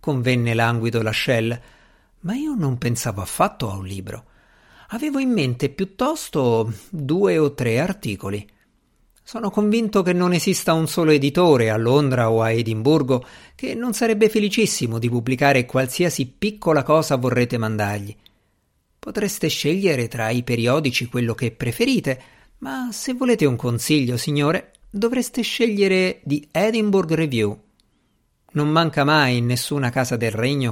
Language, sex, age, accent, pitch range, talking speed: Italian, male, 50-69, native, 115-170 Hz, 140 wpm